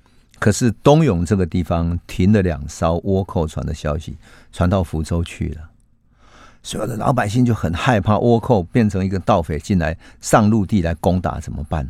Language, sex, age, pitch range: Chinese, male, 50-69, 85-115 Hz